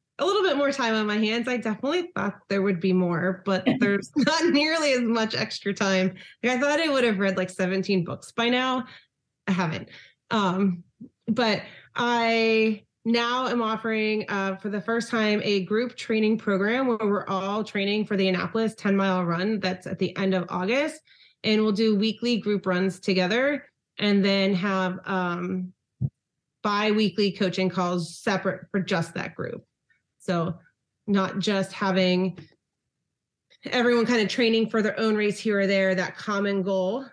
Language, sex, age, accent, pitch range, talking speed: English, female, 30-49, American, 190-230 Hz, 170 wpm